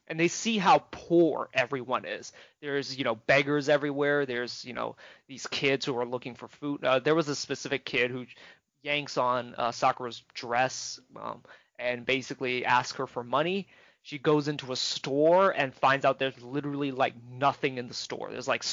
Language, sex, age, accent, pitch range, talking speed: English, male, 20-39, American, 125-150 Hz, 185 wpm